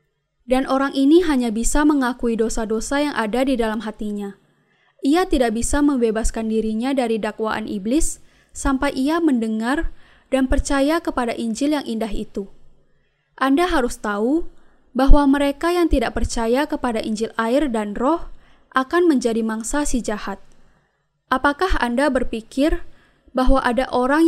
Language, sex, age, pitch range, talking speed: Indonesian, female, 10-29, 225-295 Hz, 135 wpm